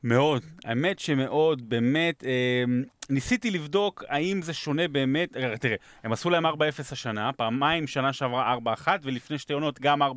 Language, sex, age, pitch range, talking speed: Hebrew, male, 30-49, 125-170 Hz, 160 wpm